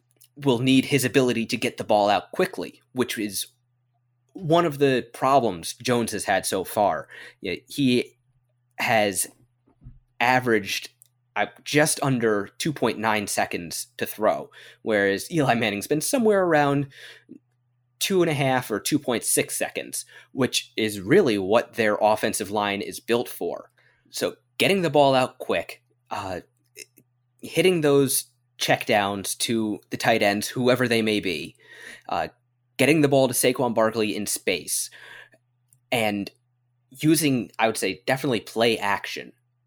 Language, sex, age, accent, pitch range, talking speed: English, male, 20-39, American, 110-130 Hz, 130 wpm